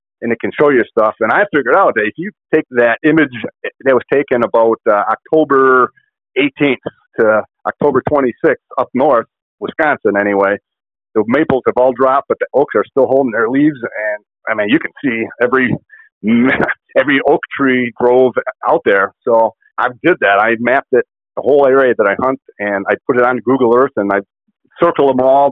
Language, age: English, 40-59